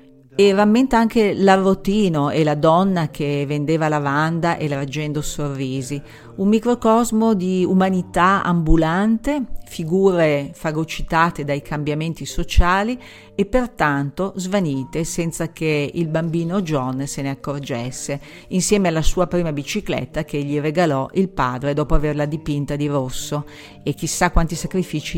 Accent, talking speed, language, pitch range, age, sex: native, 125 wpm, Italian, 145-175 Hz, 50-69, female